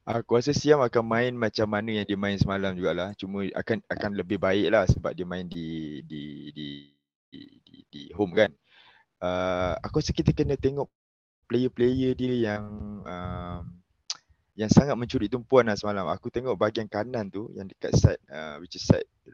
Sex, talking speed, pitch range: male, 170 wpm, 95-125 Hz